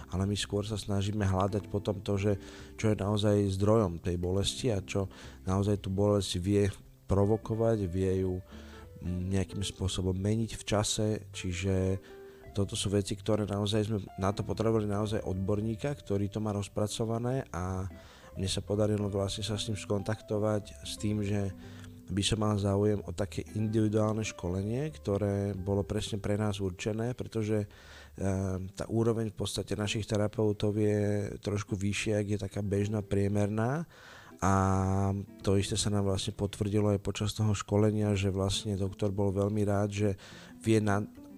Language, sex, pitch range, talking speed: Slovak, male, 95-110 Hz, 150 wpm